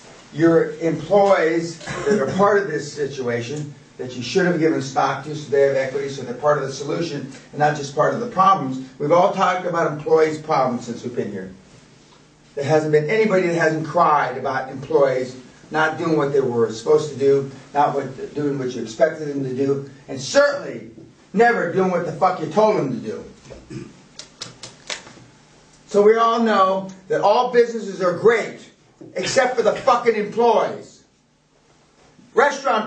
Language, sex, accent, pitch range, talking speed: English, male, American, 150-215 Hz, 170 wpm